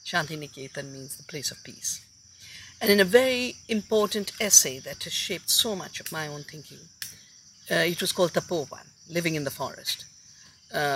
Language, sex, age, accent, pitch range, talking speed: English, female, 50-69, Indian, 130-190 Hz, 175 wpm